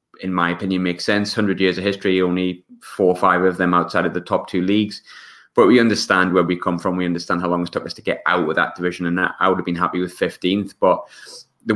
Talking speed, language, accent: 260 wpm, English, British